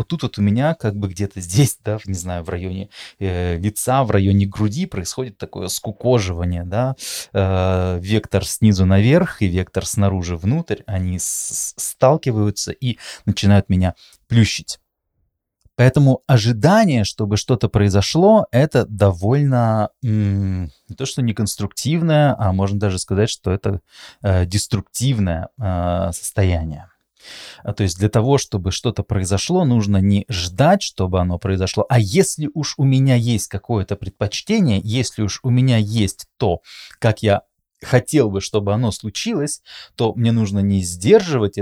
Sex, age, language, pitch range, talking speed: male, 20-39, Russian, 95-125 Hz, 145 wpm